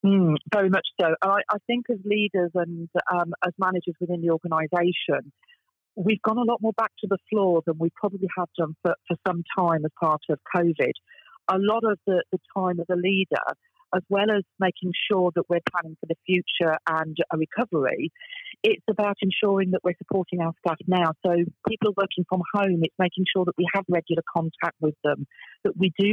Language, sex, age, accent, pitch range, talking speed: English, female, 40-59, British, 165-200 Hz, 200 wpm